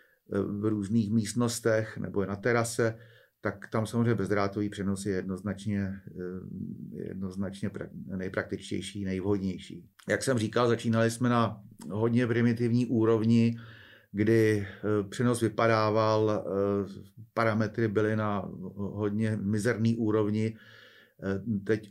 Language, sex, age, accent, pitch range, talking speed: Czech, male, 40-59, native, 105-115 Hz, 100 wpm